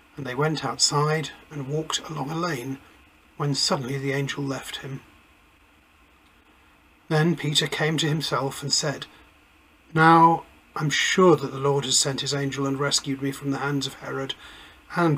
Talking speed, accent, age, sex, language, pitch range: 165 wpm, British, 40-59, male, English, 135-155 Hz